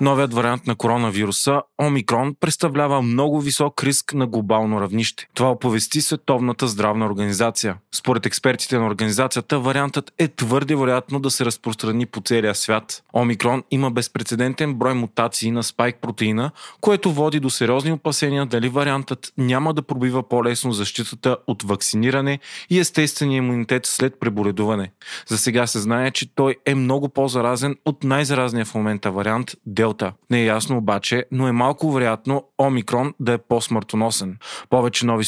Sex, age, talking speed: male, 20-39, 145 wpm